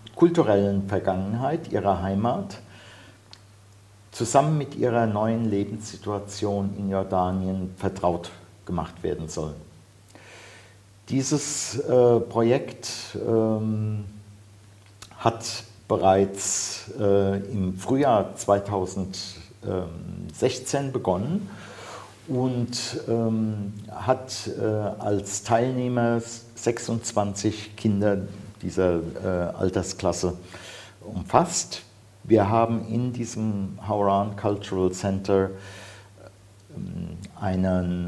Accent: German